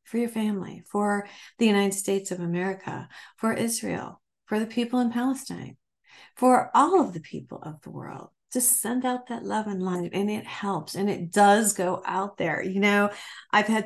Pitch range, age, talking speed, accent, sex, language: 190-245 Hz, 50-69, 190 wpm, American, female, English